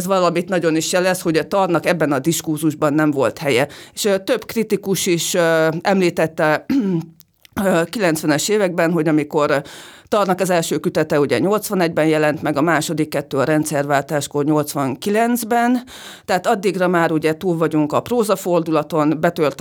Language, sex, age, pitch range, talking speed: Hungarian, female, 30-49, 155-185 Hz, 145 wpm